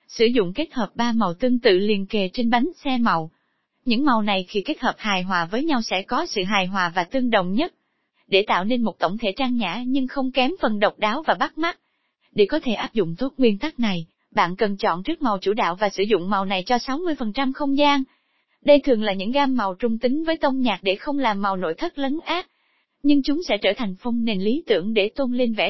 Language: Vietnamese